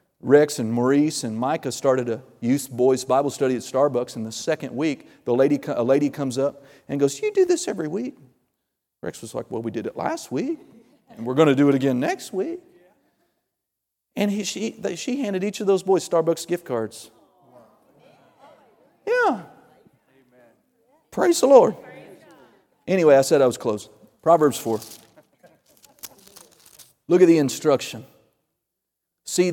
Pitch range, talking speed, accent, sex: 130-190 Hz, 160 wpm, American, male